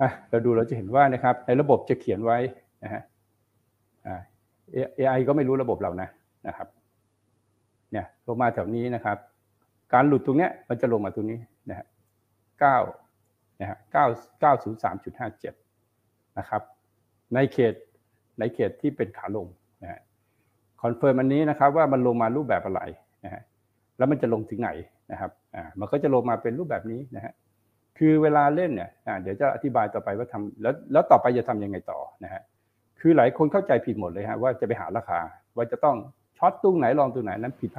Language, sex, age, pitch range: Thai, male, 60-79, 110-135 Hz